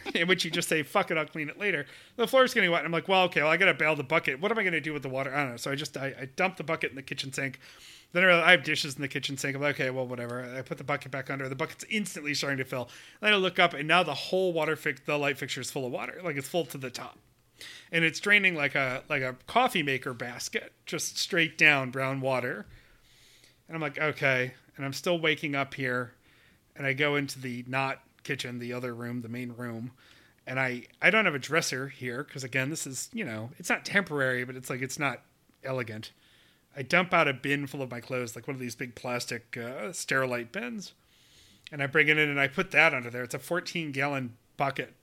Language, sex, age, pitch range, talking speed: English, male, 30-49, 130-160 Hz, 265 wpm